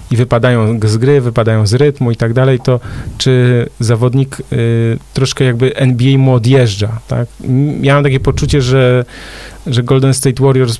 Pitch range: 115-135 Hz